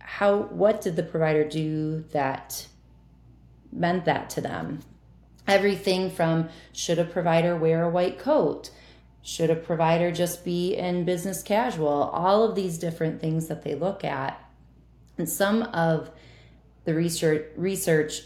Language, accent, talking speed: English, American, 140 wpm